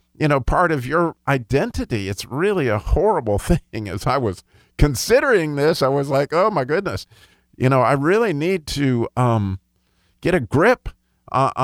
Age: 50-69